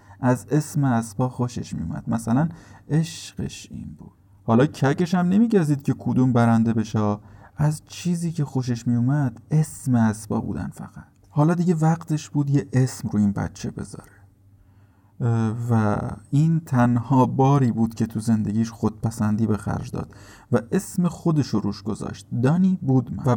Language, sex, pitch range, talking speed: Persian, male, 110-135 Hz, 145 wpm